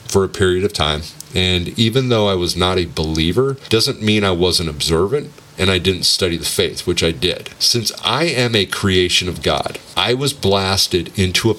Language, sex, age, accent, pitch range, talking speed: English, male, 40-59, American, 90-115 Hz, 200 wpm